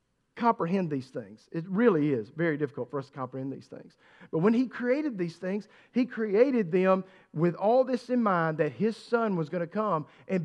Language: English